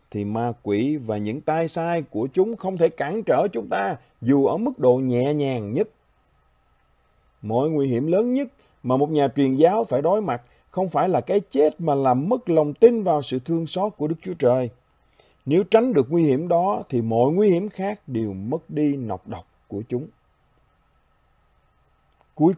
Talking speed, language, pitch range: 190 wpm, Vietnamese, 120-170 Hz